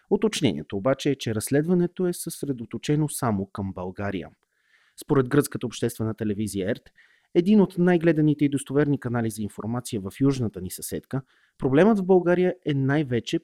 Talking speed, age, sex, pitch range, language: 145 wpm, 30-49, male, 105-150 Hz, Bulgarian